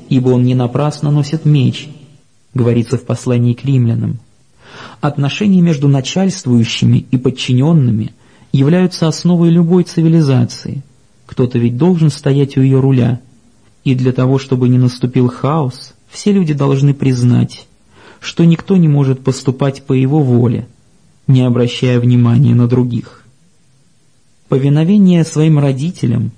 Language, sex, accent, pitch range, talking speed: Russian, male, native, 120-150 Hz, 125 wpm